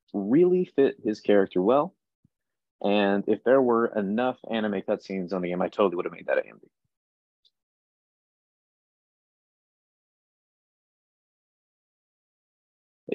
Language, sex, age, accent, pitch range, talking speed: English, male, 30-49, American, 90-125 Hz, 105 wpm